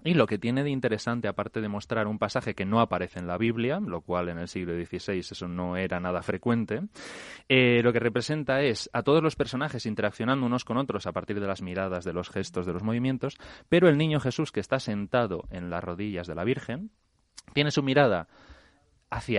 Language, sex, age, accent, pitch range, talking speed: Spanish, male, 30-49, Spanish, 95-130 Hz, 215 wpm